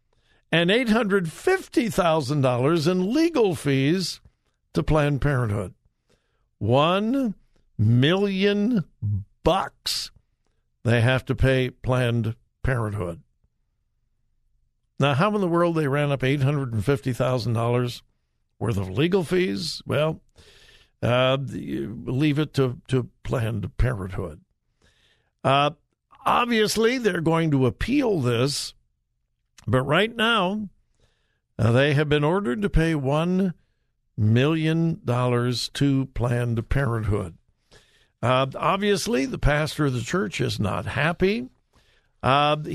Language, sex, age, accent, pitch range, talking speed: English, male, 60-79, American, 120-175 Hz, 100 wpm